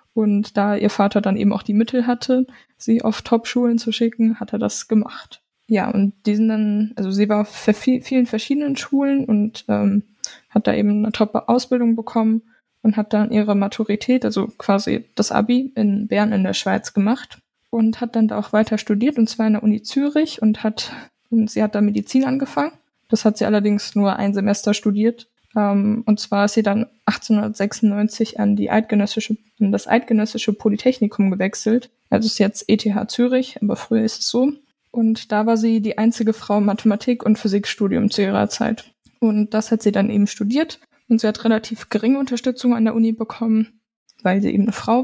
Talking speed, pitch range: 190 wpm, 210-235 Hz